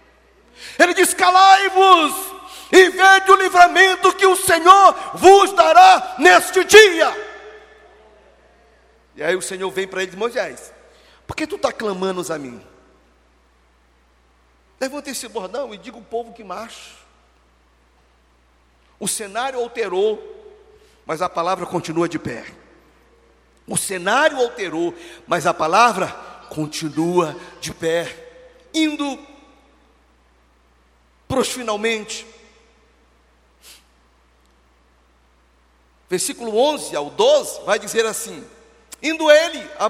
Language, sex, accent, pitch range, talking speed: Portuguese, male, Brazilian, 190-305 Hz, 105 wpm